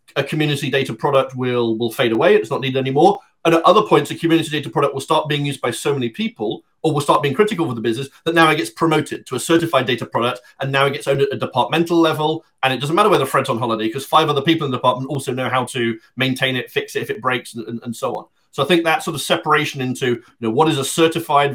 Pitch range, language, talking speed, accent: 125-165 Hz, English, 275 wpm, British